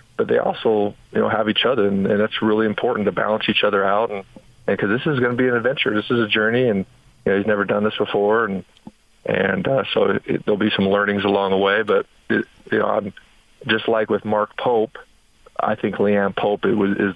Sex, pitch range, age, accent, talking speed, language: male, 100-120 Hz, 40-59, American, 240 wpm, English